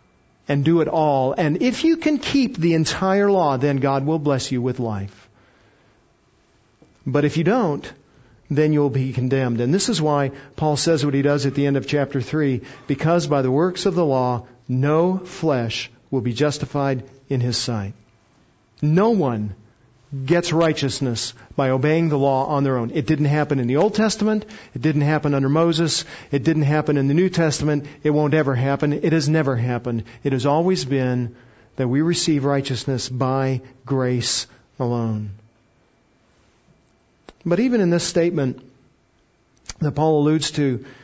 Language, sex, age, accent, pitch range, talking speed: English, male, 50-69, American, 130-160 Hz, 170 wpm